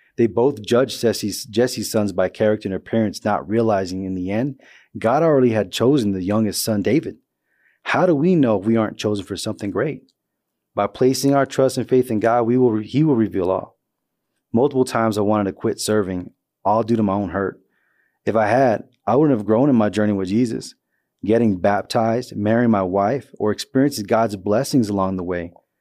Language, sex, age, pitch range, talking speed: English, male, 30-49, 100-115 Hz, 200 wpm